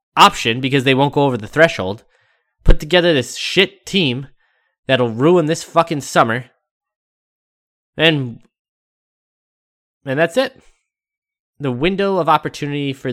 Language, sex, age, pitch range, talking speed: English, male, 20-39, 120-150 Hz, 125 wpm